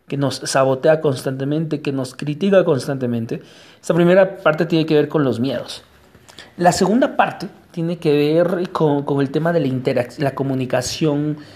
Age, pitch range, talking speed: 40-59, 130-160 Hz, 165 wpm